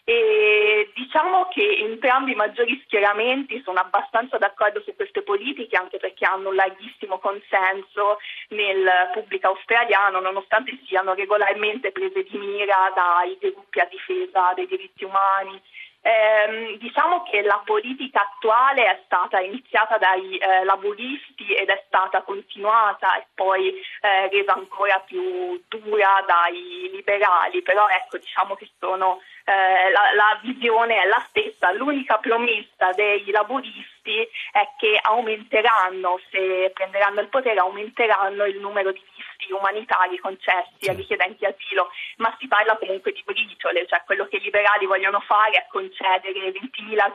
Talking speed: 140 wpm